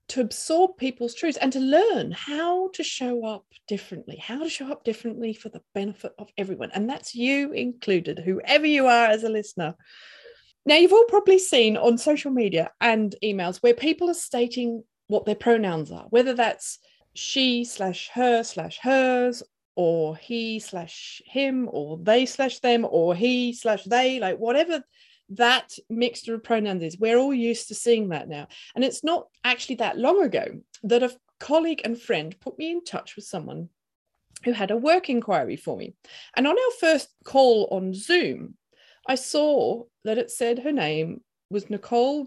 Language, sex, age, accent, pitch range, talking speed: English, female, 30-49, British, 210-270 Hz, 175 wpm